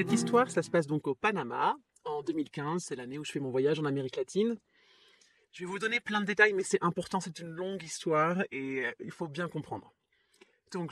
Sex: male